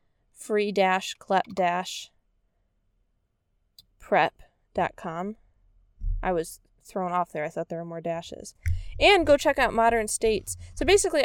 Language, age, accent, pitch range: English, 20-39, American, 160-220 Hz